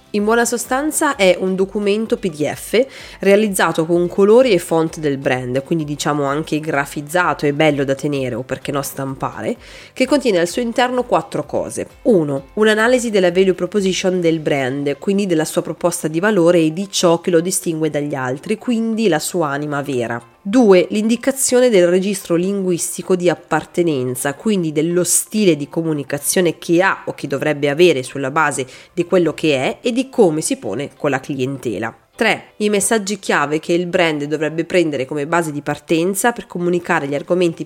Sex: female